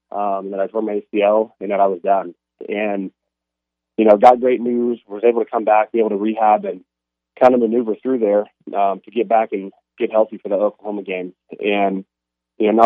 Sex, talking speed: male, 220 wpm